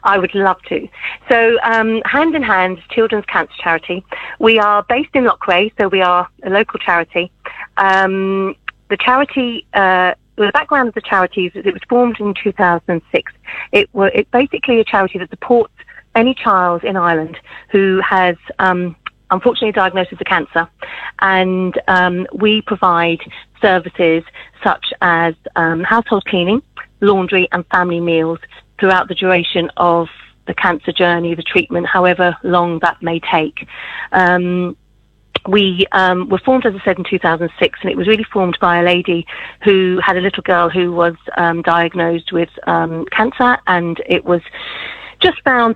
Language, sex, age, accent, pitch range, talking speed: English, female, 40-59, British, 175-205 Hz, 155 wpm